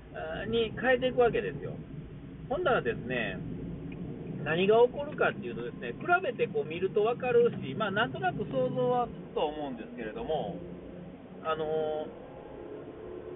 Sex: male